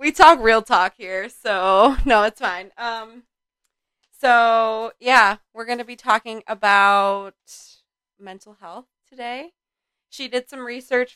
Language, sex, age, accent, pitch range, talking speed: English, female, 20-39, American, 185-235 Hz, 135 wpm